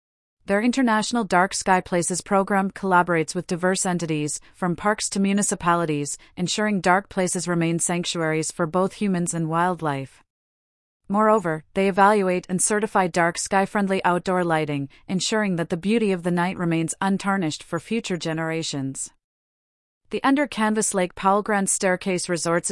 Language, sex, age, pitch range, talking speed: English, female, 30-49, 165-200 Hz, 140 wpm